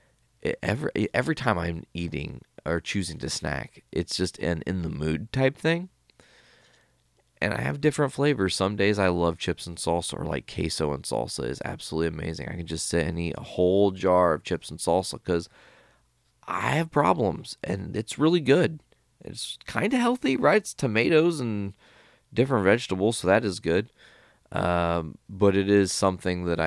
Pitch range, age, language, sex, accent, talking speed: 80-100 Hz, 30-49, English, male, American, 170 wpm